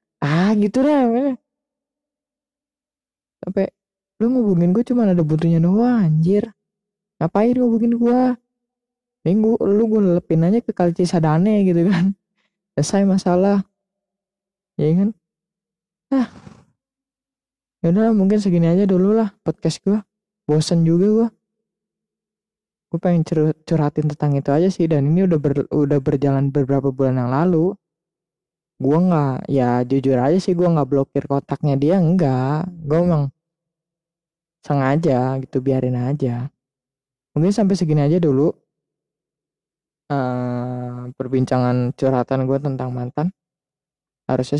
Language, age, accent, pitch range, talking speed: Indonesian, 20-39, native, 140-195 Hz, 120 wpm